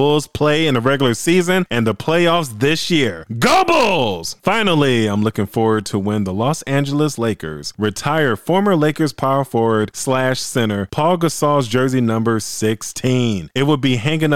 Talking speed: 165 wpm